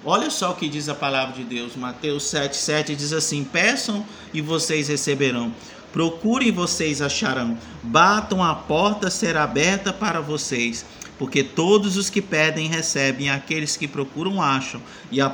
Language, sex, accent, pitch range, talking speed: Portuguese, male, Brazilian, 140-190 Hz, 155 wpm